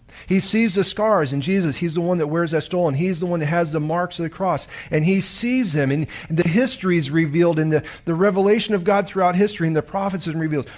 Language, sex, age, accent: English, male, 40-59, American